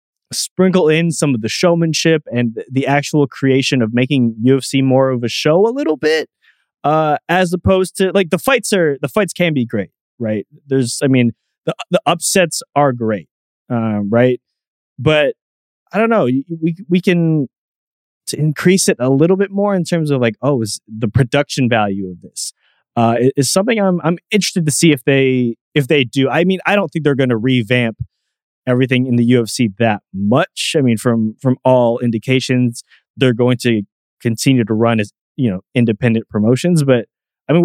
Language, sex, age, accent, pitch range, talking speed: English, male, 20-39, American, 115-155 Hz, 185 wpm